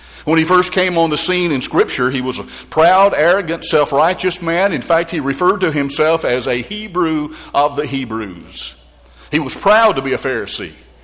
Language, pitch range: English, 125-170 Hz